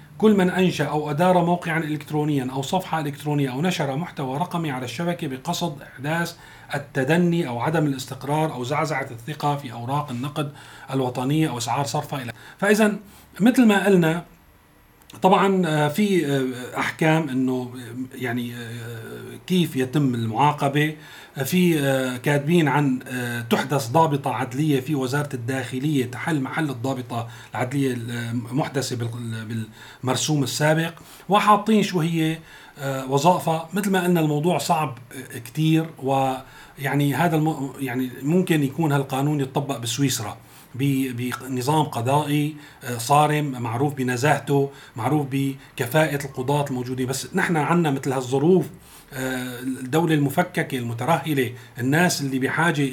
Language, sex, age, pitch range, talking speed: Arabic, male, 40-59, 130-165 Hz, 110 wpm